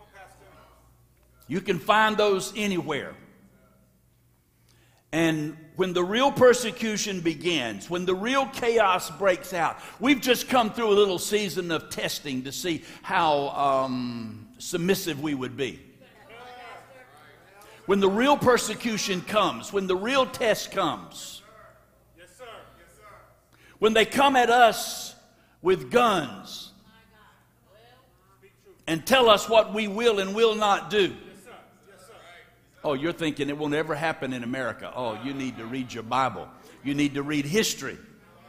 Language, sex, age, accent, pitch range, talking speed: English, male, 60-79, American, 160-230 Hz, 130 wpm